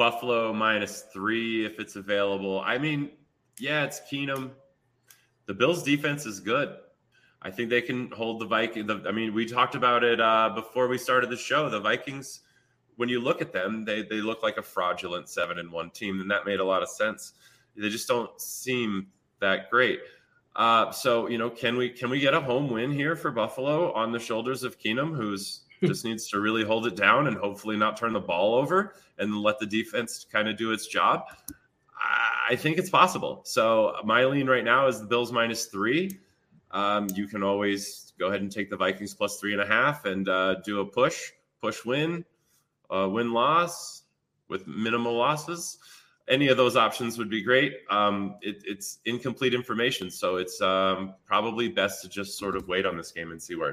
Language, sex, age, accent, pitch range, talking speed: English, male, 20-39, American, 100-130 Hz, 200 wpm